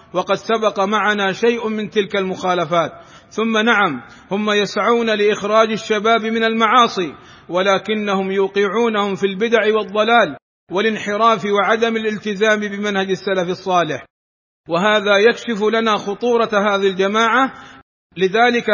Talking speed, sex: 105 wpm, male